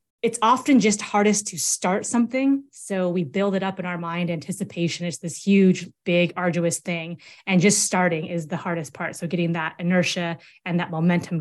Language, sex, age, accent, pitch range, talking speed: English, female, 20-39, American, 175-205 Hz, 190 wpm